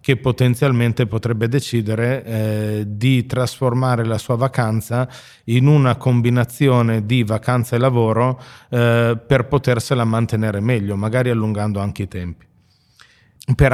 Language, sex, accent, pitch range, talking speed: Italian, male, native, 110-130 Hz, 120 wpm